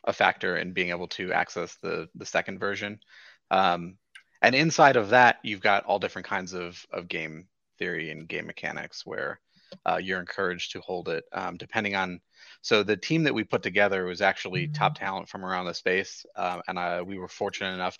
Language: English